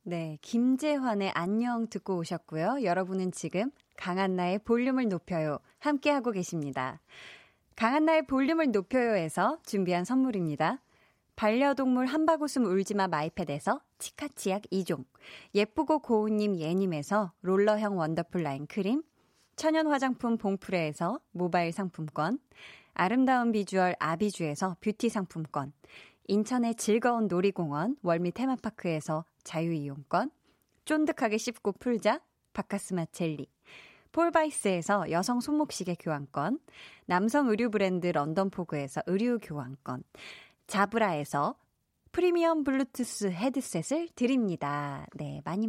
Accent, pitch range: native, 175-260 Hz